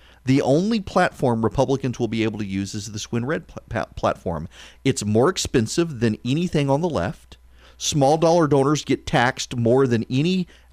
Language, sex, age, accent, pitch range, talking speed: English, male, 40-59, American, 90-150 Hz, 170 wpm